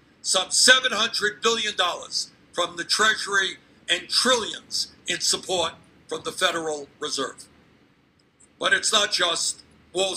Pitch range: 185-230 Hz